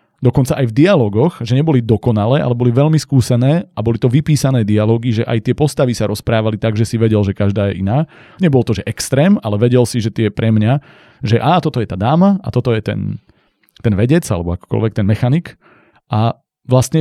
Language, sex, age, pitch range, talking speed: Slovak, male, 30-49, 115-145 Hz, 210 wpm